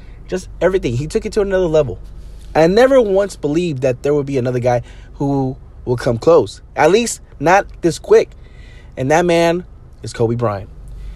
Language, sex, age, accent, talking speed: English, male, 20-39, American, 175 wpm